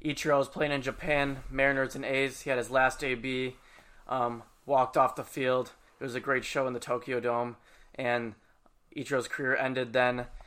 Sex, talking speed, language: male, 185 wpm, English